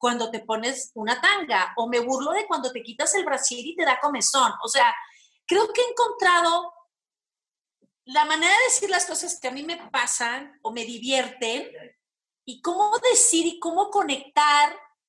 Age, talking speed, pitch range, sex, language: 40-59, 175 wpm, 280-395 Hz, female, Spanish